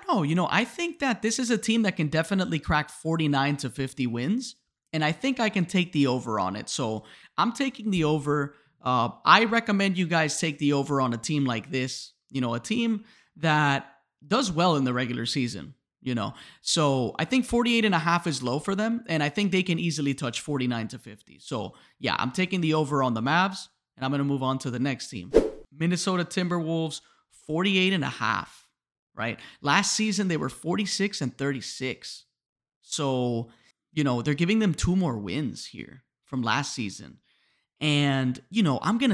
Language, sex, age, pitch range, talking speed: English, male, 30-49, 130-185 Hz, 200 wpm